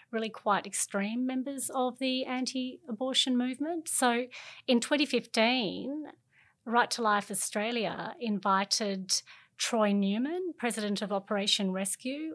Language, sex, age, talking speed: English, female, 30-49, 105 wpm